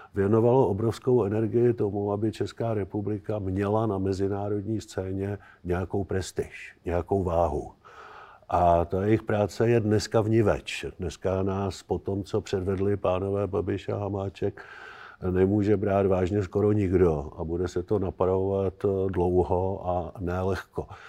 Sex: male